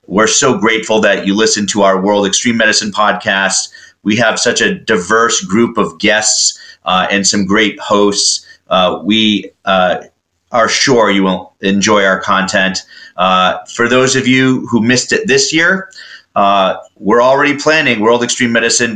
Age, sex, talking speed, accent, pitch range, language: 30-49, male, 165 wpm, American, 105-130 Hz, English